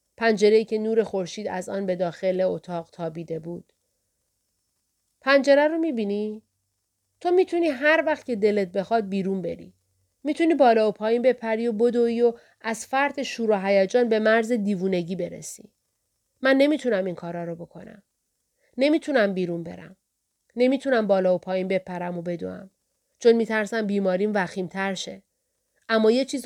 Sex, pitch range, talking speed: female, 190-250 Hz, 145 wpm